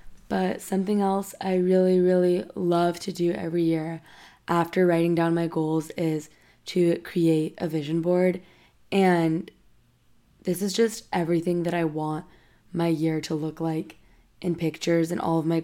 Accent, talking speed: American, 155 wpm